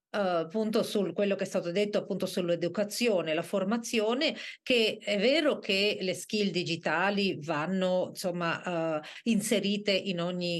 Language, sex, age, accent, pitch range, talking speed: Italian, female, 40-59, native, 175-225 Hz, 140 wpm